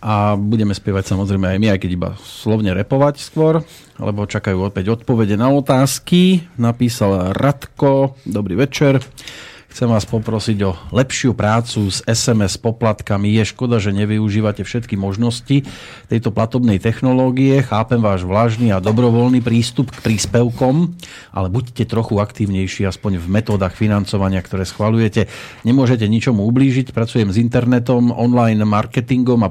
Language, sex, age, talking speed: Slovak, male, 40-59, 135 wpm